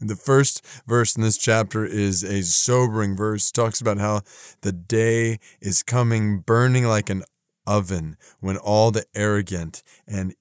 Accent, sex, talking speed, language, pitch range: American, male, 155 wpm, English, 100-125 Hz